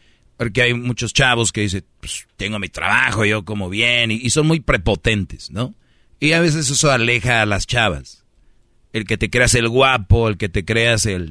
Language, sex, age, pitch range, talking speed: Spanish, male, 40-59, 105-135 Hz, 200 wpm